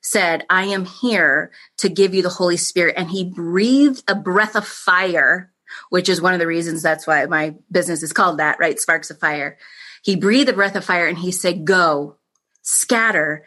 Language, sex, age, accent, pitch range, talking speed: English, female, 30-49, American, 160-200 Hz, 200 wpm